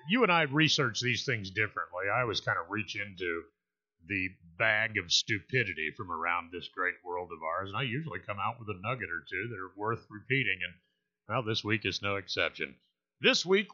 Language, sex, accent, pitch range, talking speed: English, male, American, 105-170 Hz, 205 wpm